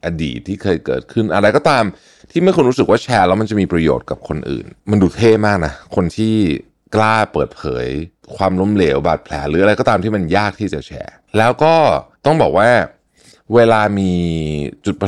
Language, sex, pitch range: Thai, male, 75-110 Hz